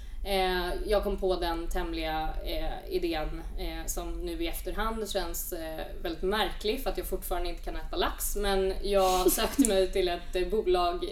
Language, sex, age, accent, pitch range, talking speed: Swedish, female, 20-39, native, 180-215 Hz, 155 wpm